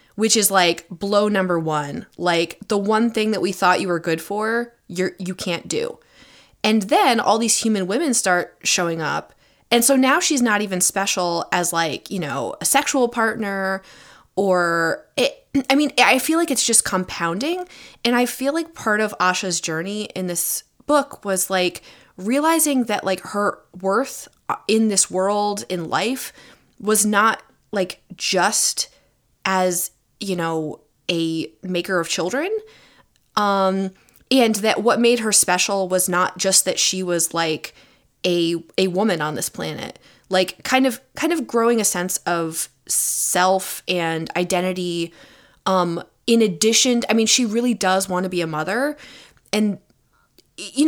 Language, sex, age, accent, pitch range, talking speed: English, female, 20-39, American, 180-235 Hz, 160 wpm